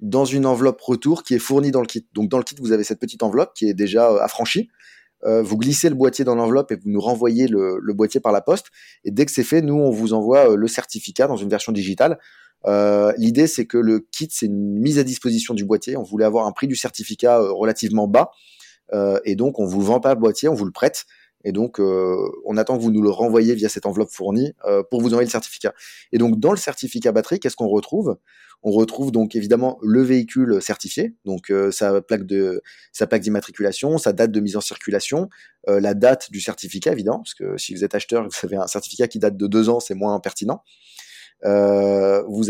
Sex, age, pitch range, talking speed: male, 20-39, 105-125 Hz, 240 wpm